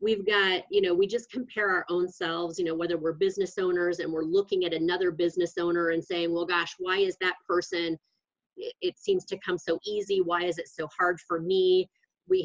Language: English